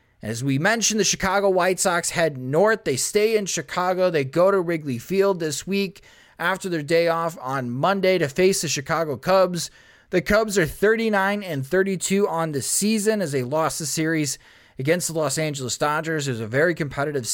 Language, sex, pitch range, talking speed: English, male, 135-180 Hz, 185 wpm